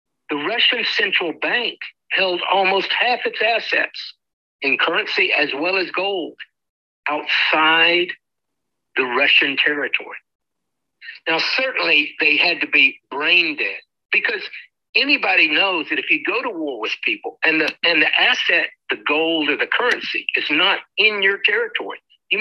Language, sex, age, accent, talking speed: English, male, 60-79, American, 140 wpm